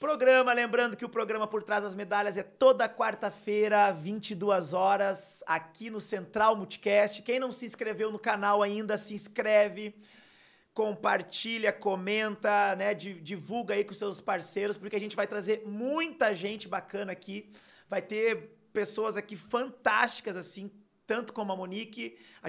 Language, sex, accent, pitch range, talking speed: Portuguese, male, Brazilian, 190-220 Hz, 150 wpm